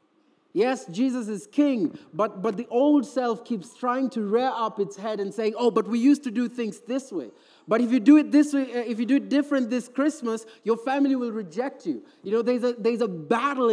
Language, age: English, 30-49